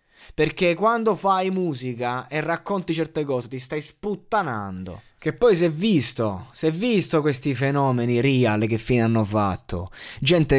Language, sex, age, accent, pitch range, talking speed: Italian, male, 20-39, native, 110-140 Hz, 155 wpm